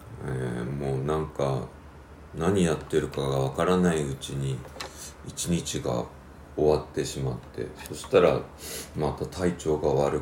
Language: Japanese